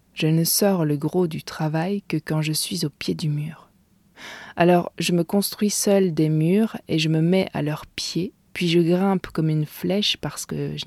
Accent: French